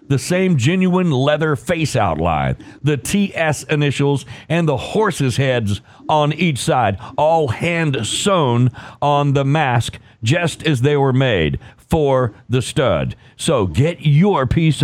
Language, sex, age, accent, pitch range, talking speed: English, male, 50-69, American, 120-155 Hz, 135 wpm